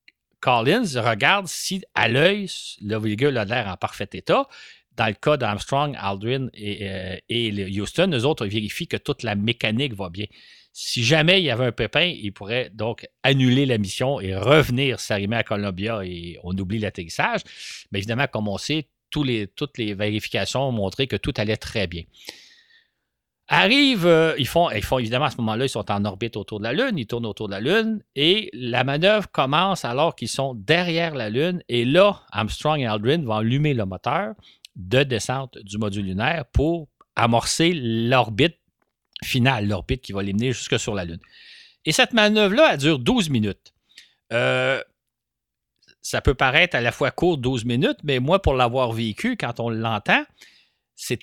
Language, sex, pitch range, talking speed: French, male, 105-150 Hz, 180 wpm